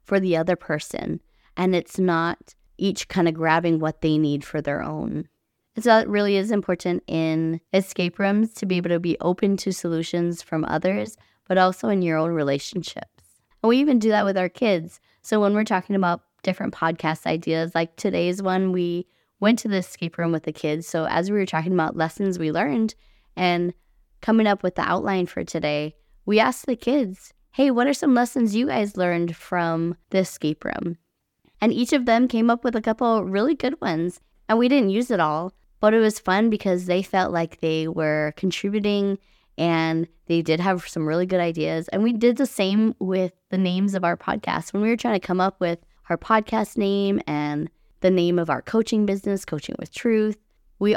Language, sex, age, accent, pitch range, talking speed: English, female, 20-39, American, 170-215 Hz, 205 wpm